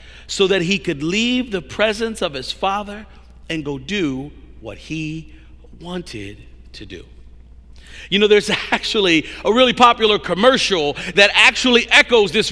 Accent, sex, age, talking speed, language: American, male, 40-59, 145 wpm, English